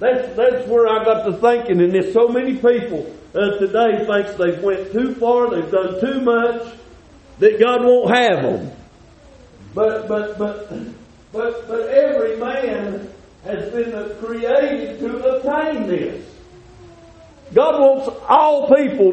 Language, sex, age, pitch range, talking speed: English, male, 50-69, 220-280 Hz, 140 wpm